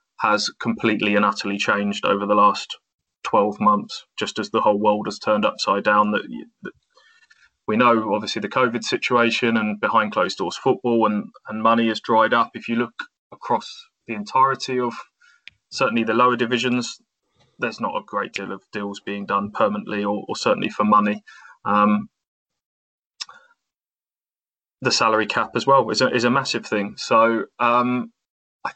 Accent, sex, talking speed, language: British, male, 165 wpm, English